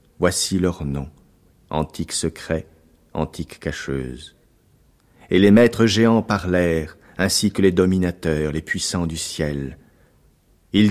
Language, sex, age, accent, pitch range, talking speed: French, male, 40-59, French, 80-100 Hz, 115 wpm